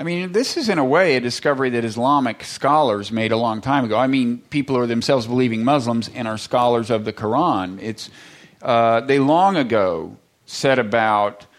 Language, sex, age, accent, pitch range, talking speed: English, male, 40-59, American, 110-135 Hz, 195 wpm